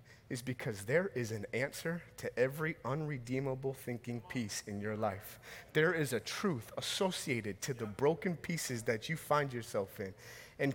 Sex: male